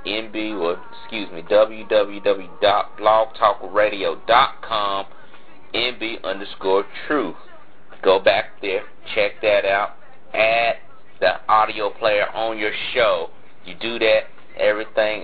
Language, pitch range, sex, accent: English, 105-125 Hz, male, American